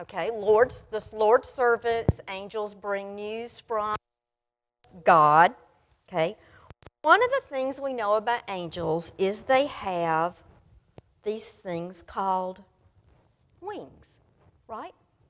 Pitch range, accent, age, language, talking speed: 175-245 Hz, American, 50-69, English, 100 wpm